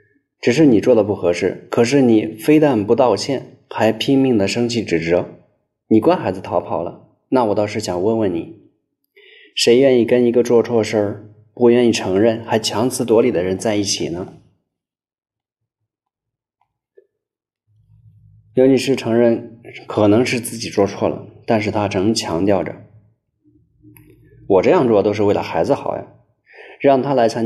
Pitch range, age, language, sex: 105-130 Hz, 20-39, Chinese, male